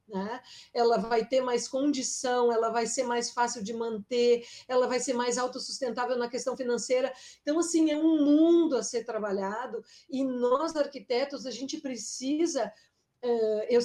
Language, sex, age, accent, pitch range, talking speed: Portuguese, female, 50-69, Brazilian, 240-290 Hz, 155 wpm